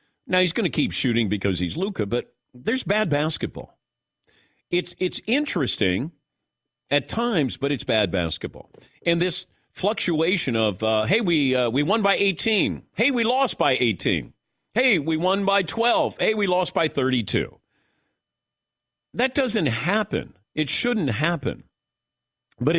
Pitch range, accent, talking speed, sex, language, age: 115-175 Hz, American, 145 wpm, male, English, 50-69